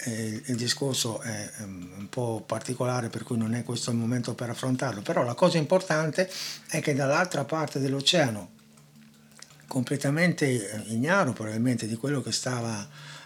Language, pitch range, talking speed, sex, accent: Italian, 115-145 Hz, 140 wpm, male, native